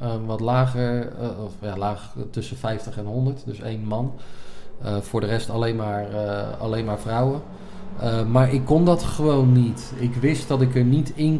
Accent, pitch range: Dutch, 105-120 Hz